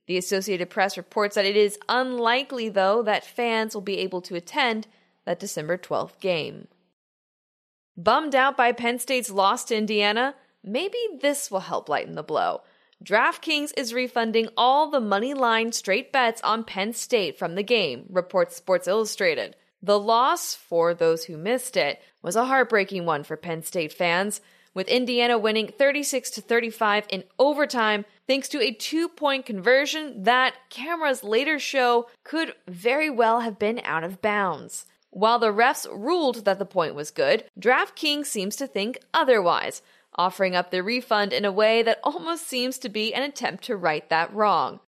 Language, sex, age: English, female, 20-39